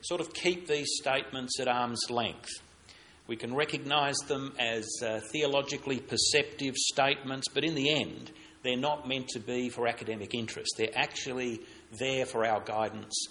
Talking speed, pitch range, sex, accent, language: 160 wpm, 110-145 Hz, male, Australian, English